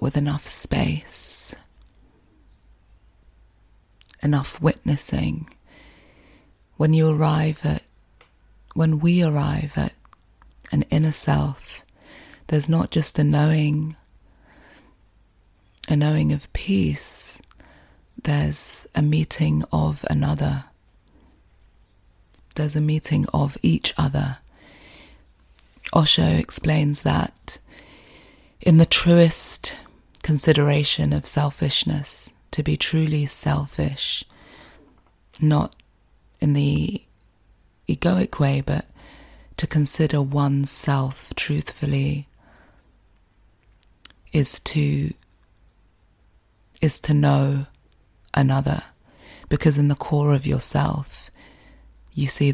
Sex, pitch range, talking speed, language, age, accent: female, 95-150 Hz, 85 wpm, English, 30-49, British